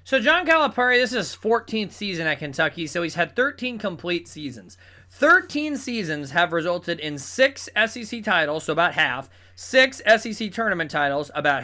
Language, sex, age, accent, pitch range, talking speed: English, male, 20-39, American, 155-210 Hz, 165 wpm